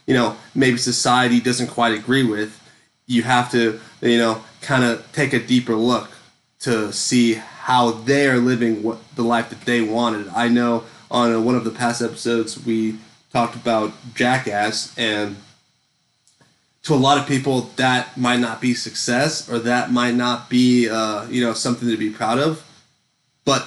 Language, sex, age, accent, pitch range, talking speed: English, male, 20-39, American, 115-130 Hz, 170 wpm